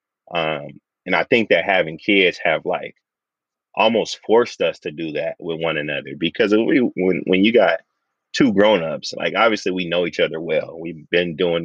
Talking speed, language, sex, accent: 180 wpm, English, male, American